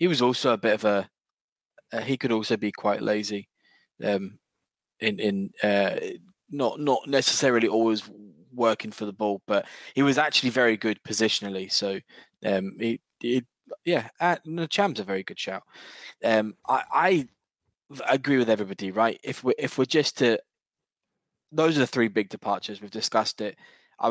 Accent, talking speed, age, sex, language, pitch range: British, 170 wpm, 20-39, male, English, 100-115 Hz